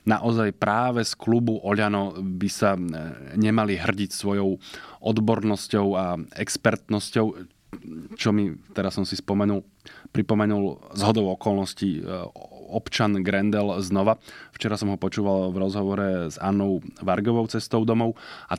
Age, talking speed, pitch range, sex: 20-39, 125 wpm, 95-110 Hz, male